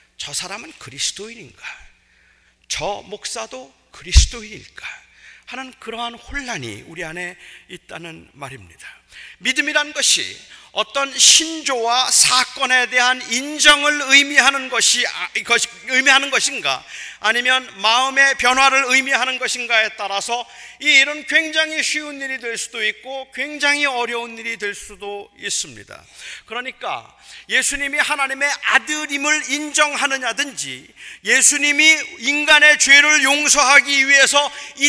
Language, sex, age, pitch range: Korean, male, 40-59, 220-280 Hz